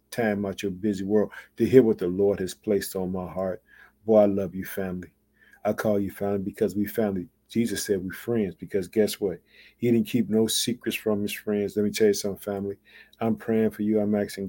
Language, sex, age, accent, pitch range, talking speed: English, male, 50-69, American, 95-110 Hz, 225 wpm